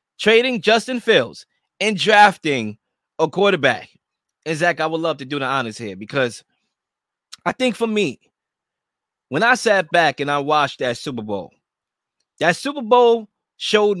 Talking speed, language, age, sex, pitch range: 155 wpm, English, 20-39, male, 150-235 Hz